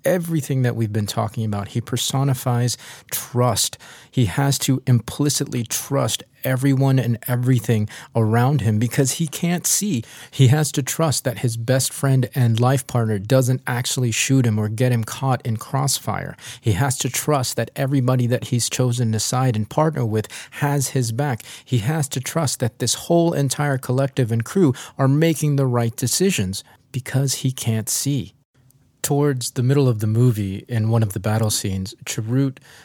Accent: American